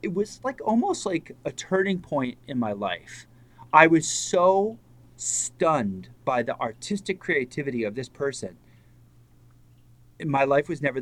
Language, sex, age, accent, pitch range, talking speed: English, male, 30-49, American, 115-160 Hz, 140 wpm